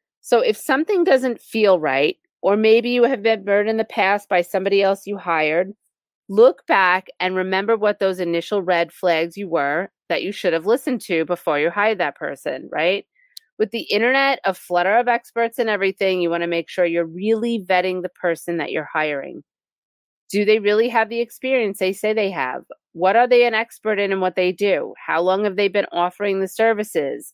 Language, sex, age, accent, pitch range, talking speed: English, female, 30-49, American, 180-235 Hz, 205 wpm